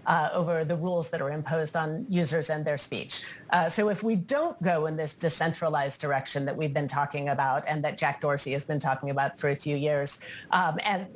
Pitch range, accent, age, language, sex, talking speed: 160-195 Hz, American, 40-59, English, female, 220 wpm